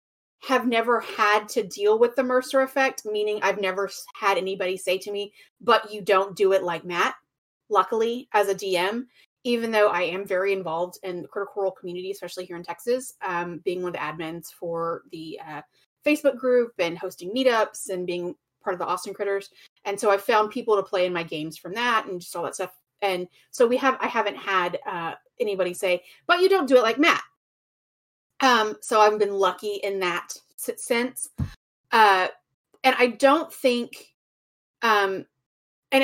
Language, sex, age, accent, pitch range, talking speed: English, female, 30-49, American, 190-255 Hz, 185 wpm